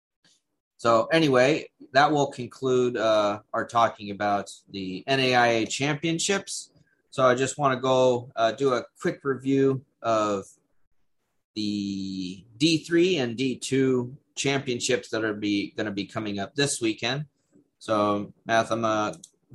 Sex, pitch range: male, 115-150 Hz